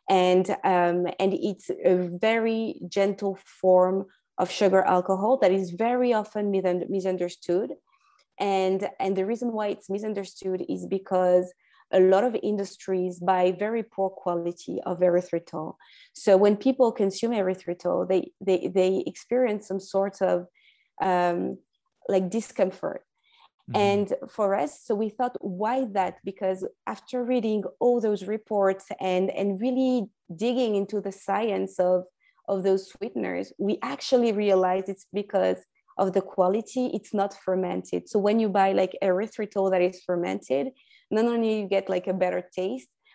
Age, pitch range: 20-39, 185-215 Hz